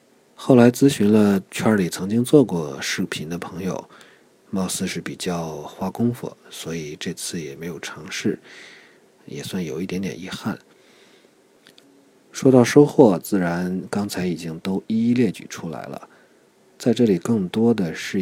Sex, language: male, Chinese